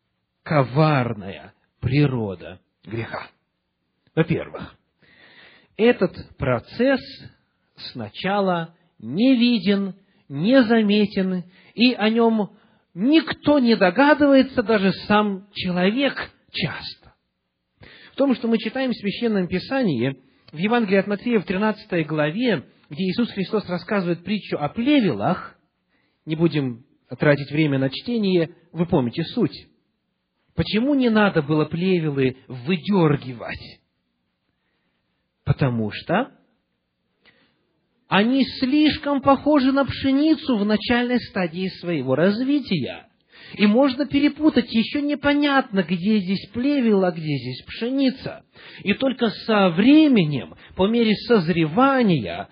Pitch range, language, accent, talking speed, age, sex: 150-235 Hz, Russian, native, 100 wpm, 40-59, male